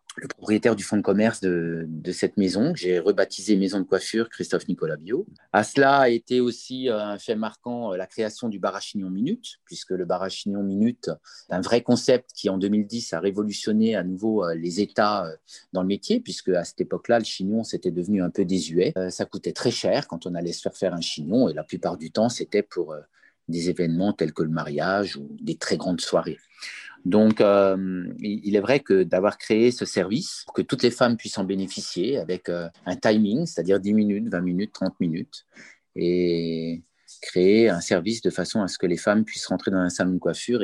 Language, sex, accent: French, male, French